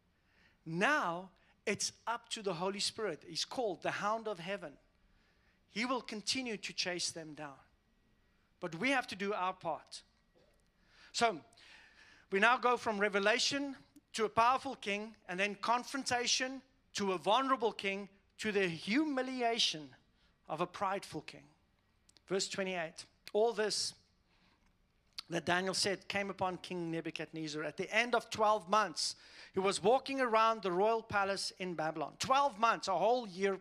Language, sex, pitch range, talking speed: English, male, 185-250 Hz, 145 wpm